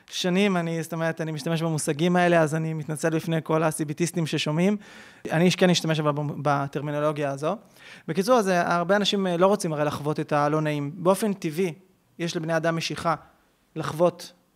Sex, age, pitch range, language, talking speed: male, 20-39, 155-185 Hz, Hebrew, 155 wpm